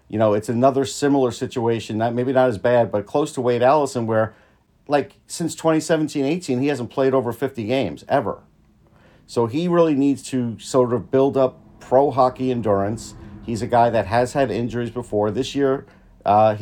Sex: male